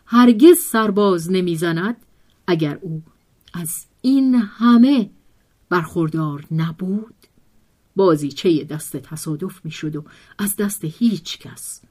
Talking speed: 95 wpm